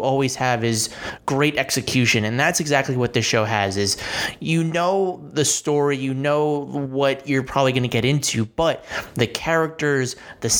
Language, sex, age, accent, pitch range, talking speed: English, male, 30-49, American, 120-145 Hz, 170 wpm